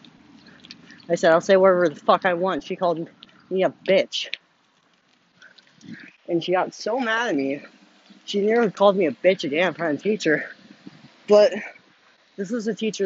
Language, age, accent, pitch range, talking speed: English, 20-39, American, 165-225 Hz, 165 wpm